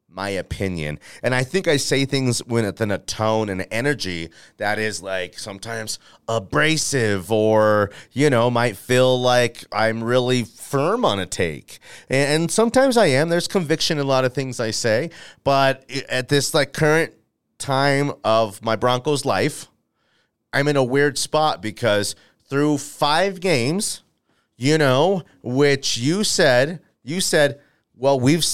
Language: English